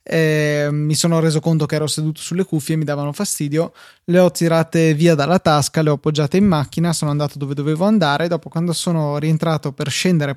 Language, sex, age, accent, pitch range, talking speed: Italian, male, 20-39, native, 145-165 Hz, 210 wpm